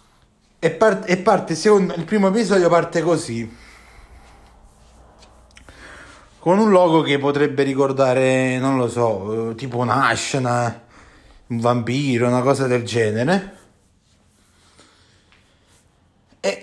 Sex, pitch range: male, 115-165 Hz